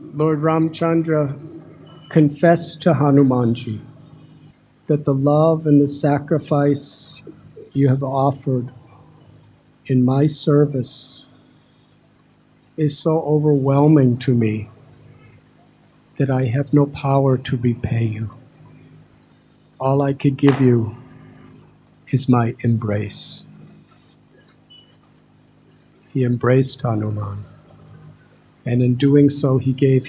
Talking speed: 95 wpm